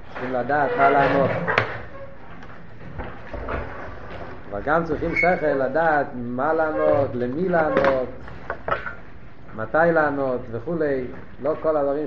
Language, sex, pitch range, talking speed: Hebrew, male, 120-150 Hz, 95 wpm